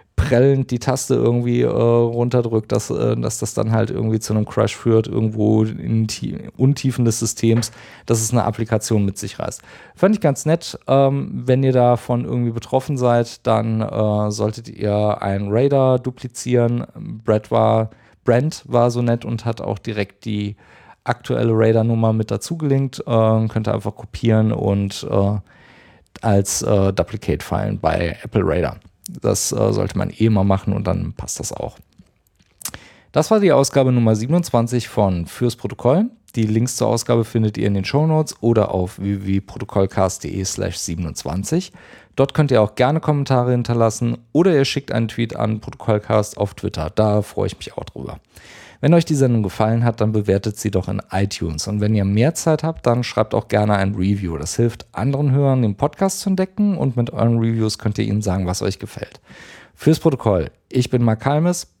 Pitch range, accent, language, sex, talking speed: 105-125 Hz, German, German, male, 175 wpm